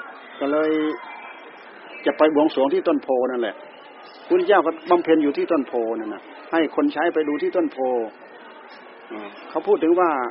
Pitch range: 140-215 Hz